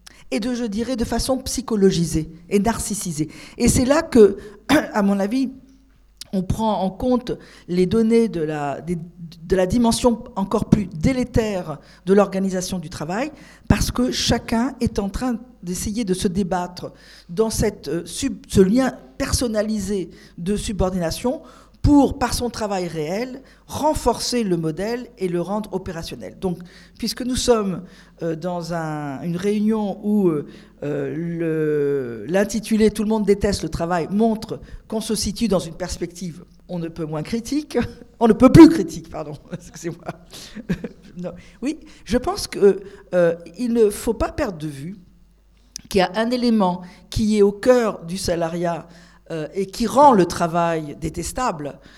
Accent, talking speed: French, 150 wpm